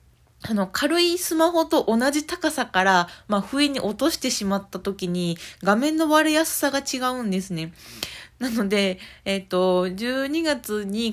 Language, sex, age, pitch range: Japanese, female, 20-39, 195-255 Hz